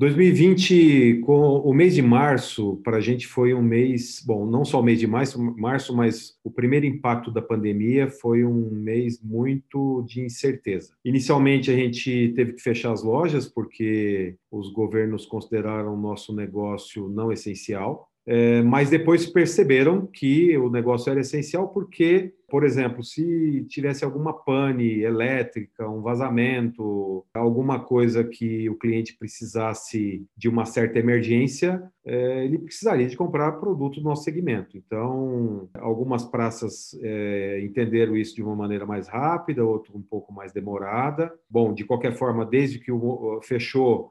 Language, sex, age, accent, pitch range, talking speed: Portuguese, male, 40-59, Brazilian, 110-135 Hz, 145 wpm